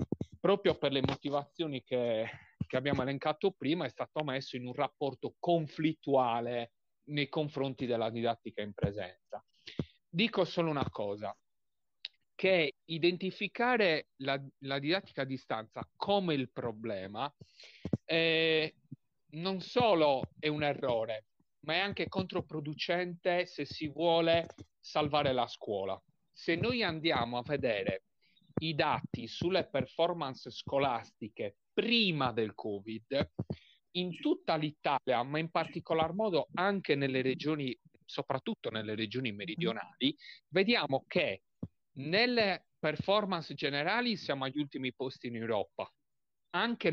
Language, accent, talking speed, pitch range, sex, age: Italian, native, 115 wpm, 130-170 Hz, male, 40-59